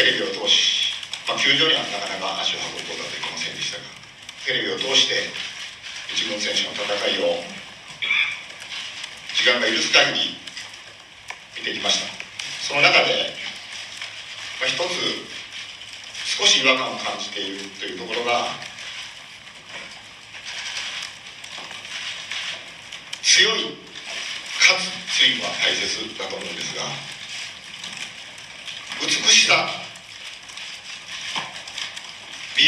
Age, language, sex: 50-69, Japanese, male